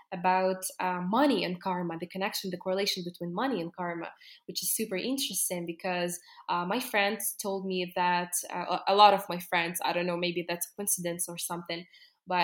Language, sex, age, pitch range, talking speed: English, female, 20-39, 185-220 Hz, 195 wpm